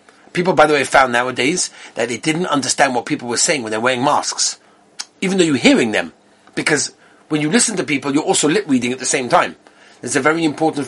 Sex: male